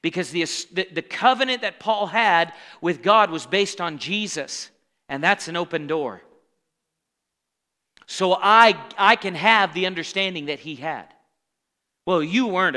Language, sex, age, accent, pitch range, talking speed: English, male, 40-59, American, 170-230 Hz, 145 wpm